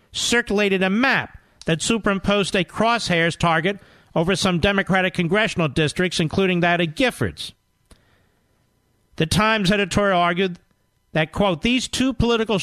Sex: male